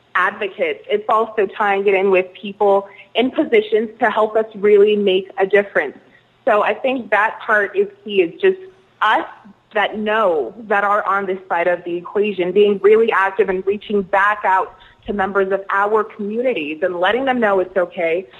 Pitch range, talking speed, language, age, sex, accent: 190-220 Hz, 180 wpm, English, 20-39, female, American